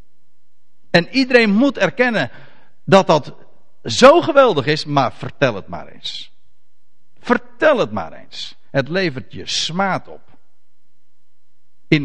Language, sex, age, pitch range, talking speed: Dutch, male, 50-69, 145-240 Hz, 120 wpm